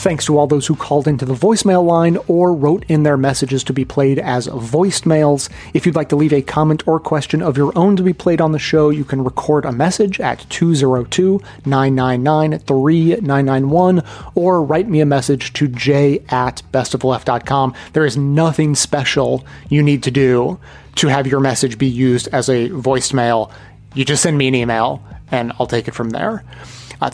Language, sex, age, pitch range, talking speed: English, male, 30-49, 130-155 Hz, 185 wpm